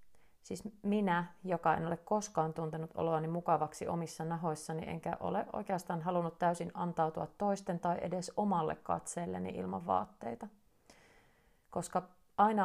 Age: 30-49